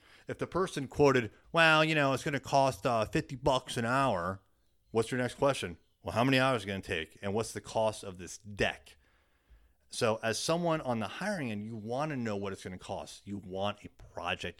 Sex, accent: male, American